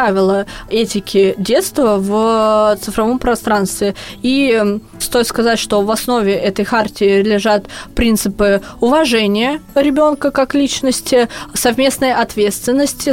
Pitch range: 205-245 Hz